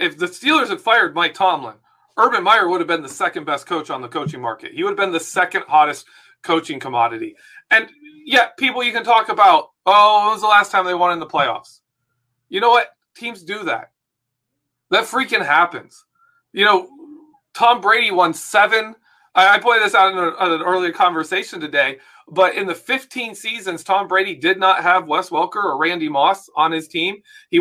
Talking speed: 200 wpm